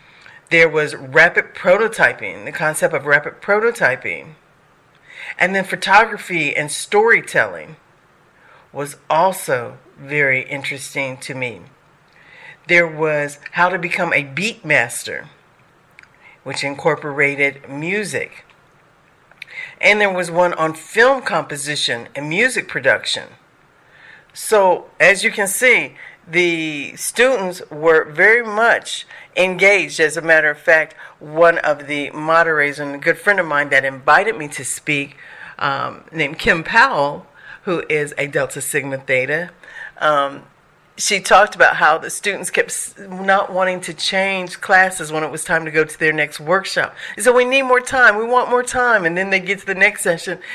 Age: 50-69